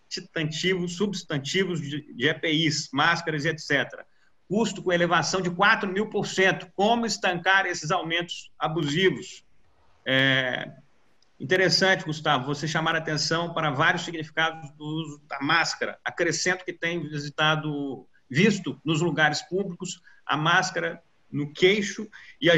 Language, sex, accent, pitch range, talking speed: Portuguese, male, Brazilian, 150-180 Hz, 120 wpm